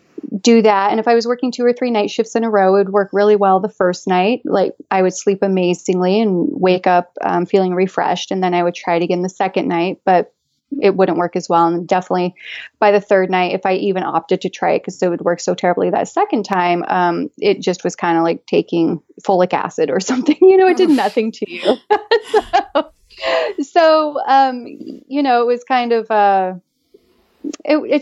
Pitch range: 185-240 Hz